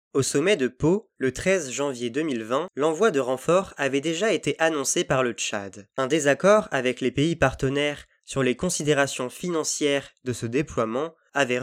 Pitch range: 130-165 Hz